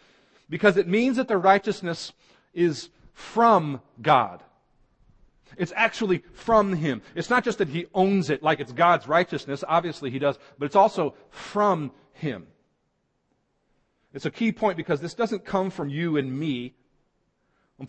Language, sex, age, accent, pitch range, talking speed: English, male, 40-59, American, 140-195 Hz, 150 wpm